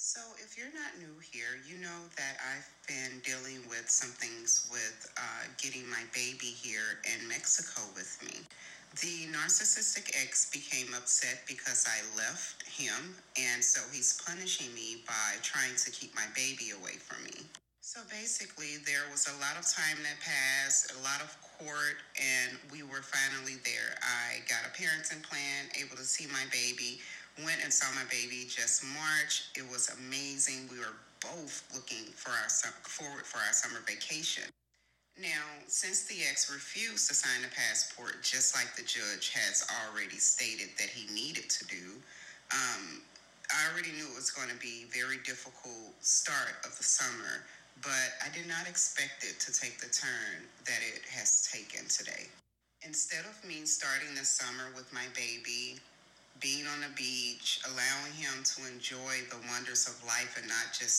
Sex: female